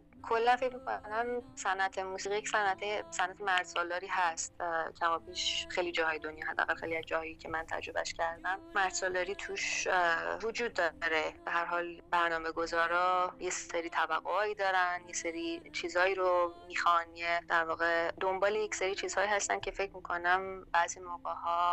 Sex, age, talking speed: female, 20-39, 140 wpm